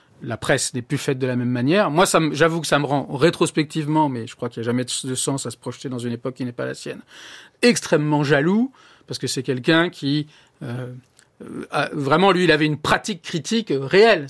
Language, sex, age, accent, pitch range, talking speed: French, male, 40-59, French, 125-160 Hz, 225 wpm